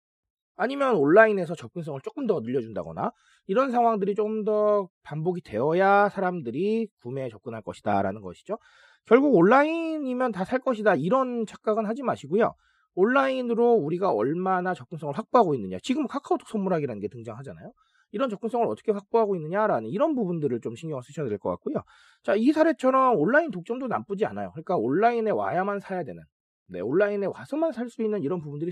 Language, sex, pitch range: Korean, male, 155-225 Hz